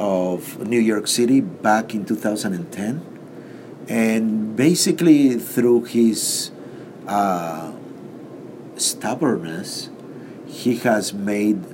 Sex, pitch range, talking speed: male, 100-130 Hz, 80 wpm